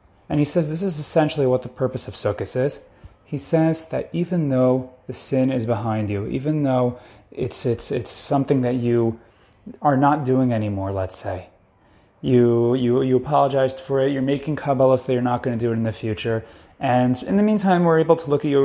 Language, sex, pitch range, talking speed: English, male, 110-145 Hz, 210 wpm